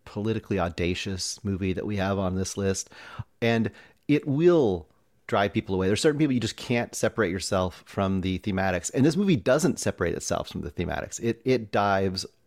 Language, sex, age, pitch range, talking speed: English, male, 30-49, 90-115 Hz, 185 wpm